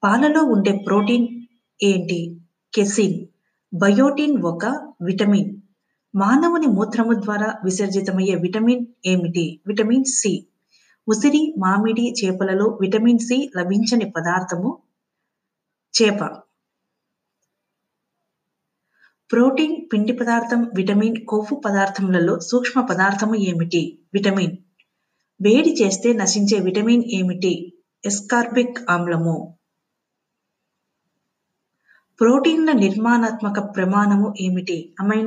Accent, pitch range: native, 185-240 Hz